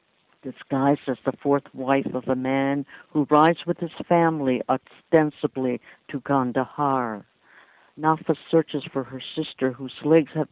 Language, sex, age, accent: English, female, 60-79, American